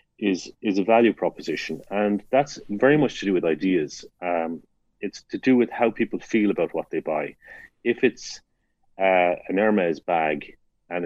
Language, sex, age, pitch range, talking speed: English, male, 40-59, 90-120 Hz, 175 wpm